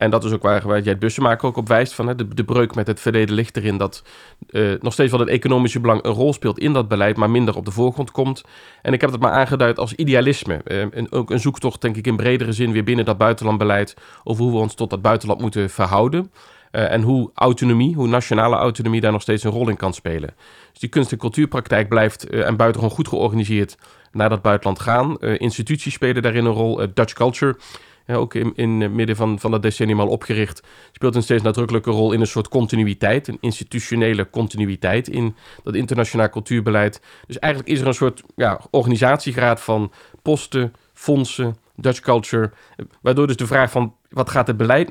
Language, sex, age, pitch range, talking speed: Dutch, male, 40-59, 110-125 Hz, 210 wpm